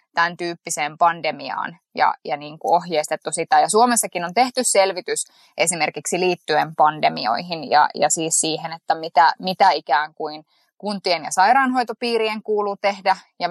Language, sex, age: Finnish, female, 20-39